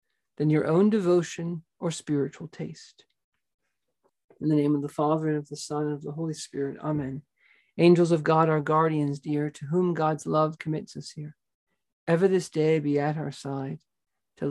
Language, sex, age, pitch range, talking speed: English, male, 50-69, 145-175 Hz, 180 wpm